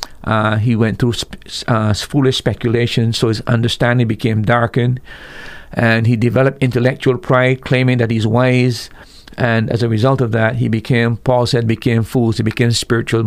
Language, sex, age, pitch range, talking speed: English, male, 50-69, 110-125 Hz, 165 wpm